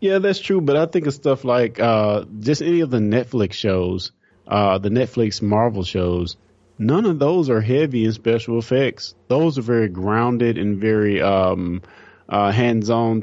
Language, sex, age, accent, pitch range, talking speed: English, male, 20-39, American, 100-125 Hz, 175 wpm